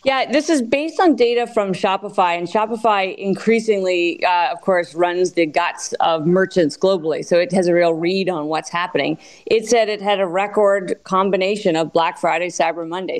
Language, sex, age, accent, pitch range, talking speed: English, female, 40-59, American, 170-215 Hz, 185 wpm